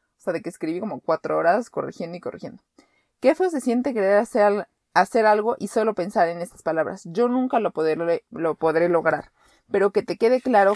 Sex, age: female, 30-49